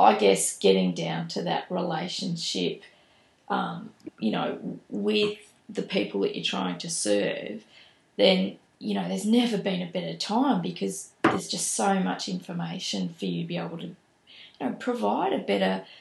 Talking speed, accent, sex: 165 wpm, Australian, female